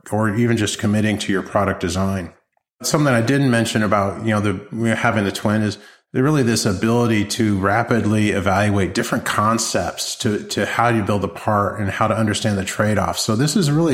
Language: English